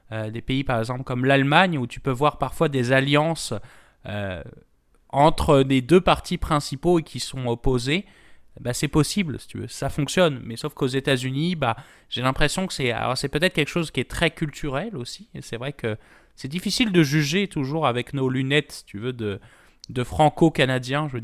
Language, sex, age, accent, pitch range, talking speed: French, male, 20-39, French, 120-155 Hz, 200 wpm